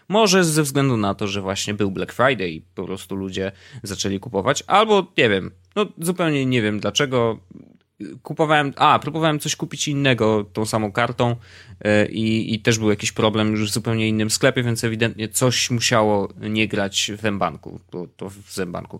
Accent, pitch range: native, 105-135 Hz